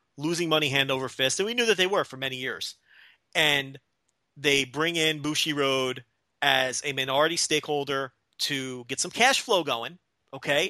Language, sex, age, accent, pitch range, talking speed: English, male, 30-49, American, 135-165 Hz, 175 wpm